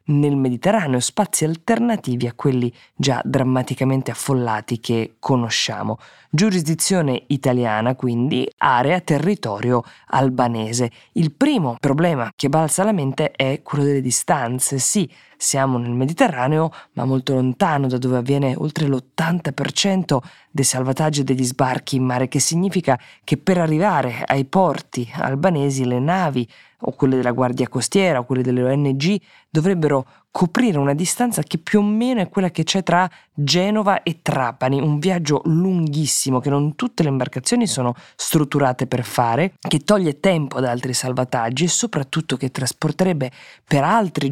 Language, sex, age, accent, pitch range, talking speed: Italian, female, 20-39, native, 130-170 Hz, 145 wpm